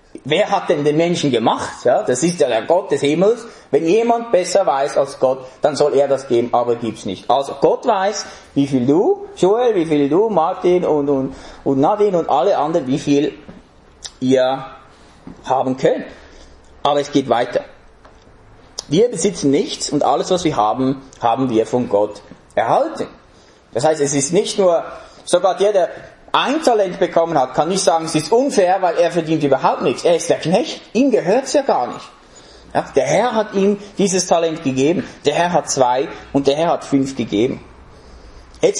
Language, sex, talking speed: English, male, 185 wpm